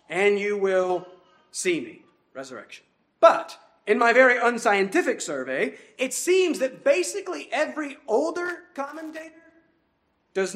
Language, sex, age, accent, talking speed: English, male, 40-59, American, 115 wpm